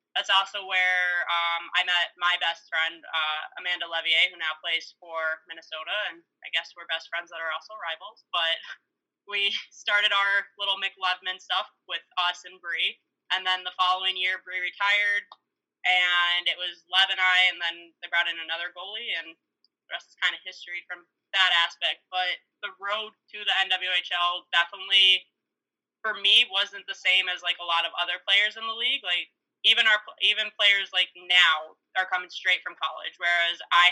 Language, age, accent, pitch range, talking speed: English, 20-39, American, 165-185 Hz, 185 wpm